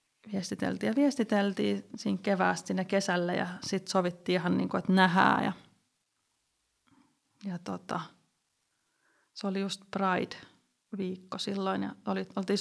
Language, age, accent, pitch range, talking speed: Finnish, 30-49, native, 180-205 Hz, 125 wpm